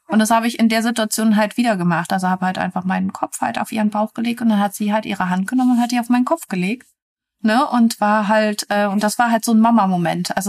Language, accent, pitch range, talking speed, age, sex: German, German, 195-225 Hz, 280 wpm, 30-49, female